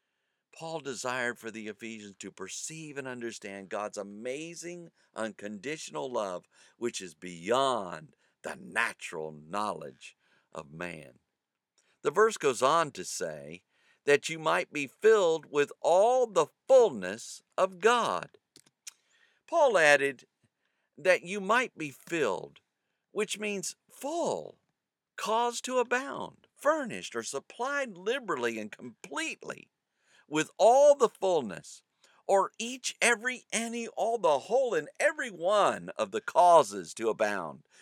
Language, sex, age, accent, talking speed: English, male, 50-69, American, 120 wpm